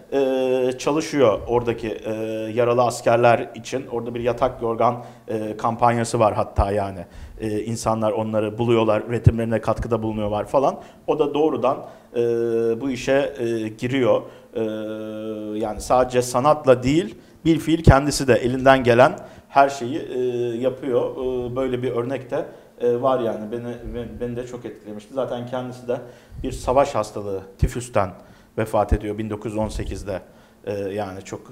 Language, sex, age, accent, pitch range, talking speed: Turkish, male, 50-69, native, 110-130 Hz, 135 wpm